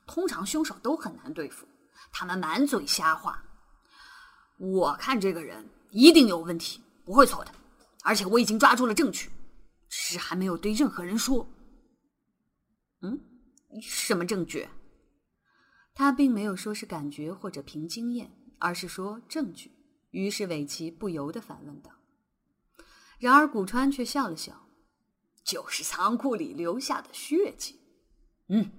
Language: Chinese